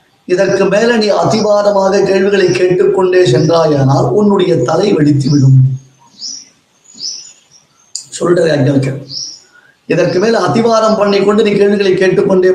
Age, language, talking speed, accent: 30-49, Tamil, 90 wpm, native